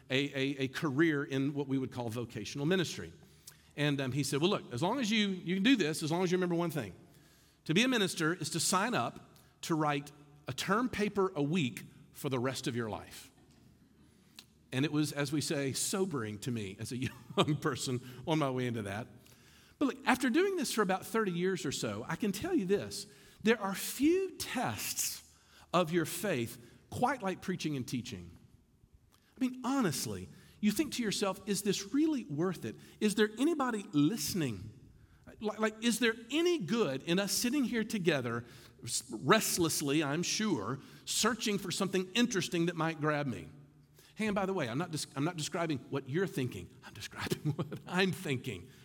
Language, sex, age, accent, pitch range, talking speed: English, male, 50-69, American, 130-195 Hz, 190 wpm